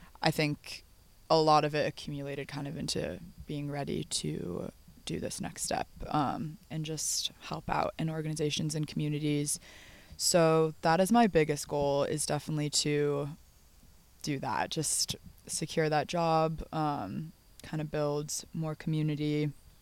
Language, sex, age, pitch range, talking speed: English, female, 20-39, 150-160 Hz, 140 wpm